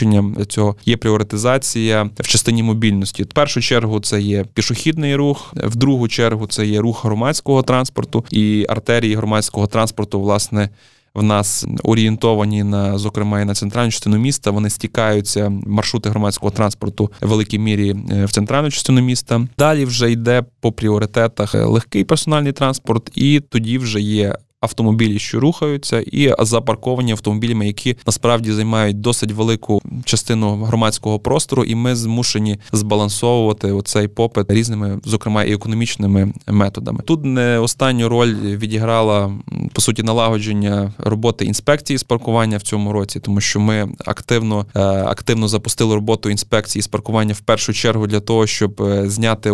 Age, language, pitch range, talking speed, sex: 20-39, Ukrainian, 105-120 Hz, 145 wpm, male